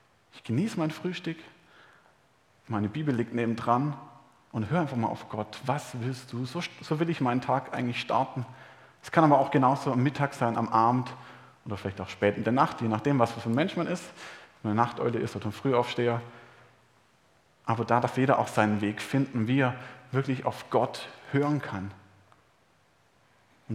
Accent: German